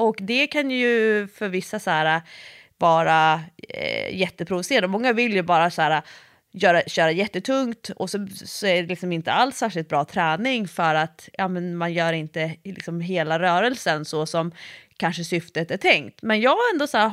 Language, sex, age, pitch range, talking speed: Swedish, female, 30-49, 180-270 Hz, 180 wpm